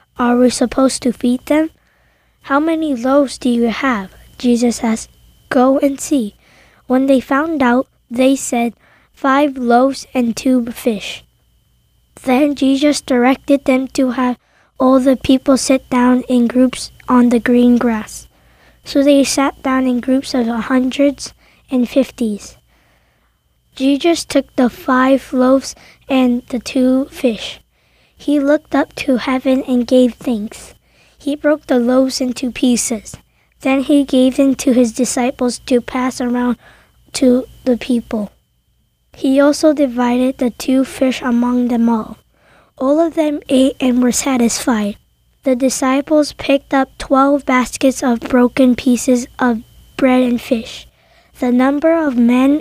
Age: 20-39